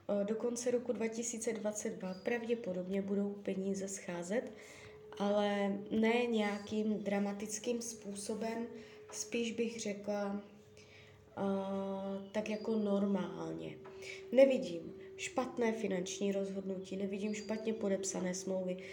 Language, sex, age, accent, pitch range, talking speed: Czech, female, 20-39, native, 195-230 Hz, 90 wpm